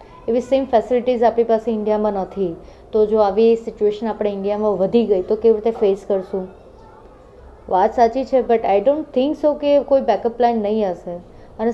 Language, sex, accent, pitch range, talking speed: Gujarati, female, native, 210-260 Hz, 180 wpm